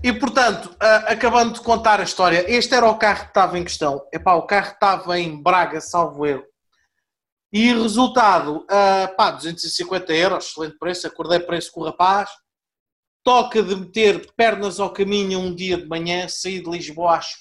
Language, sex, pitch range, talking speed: Portuguese, male, 175-225 Hz, 175 wpm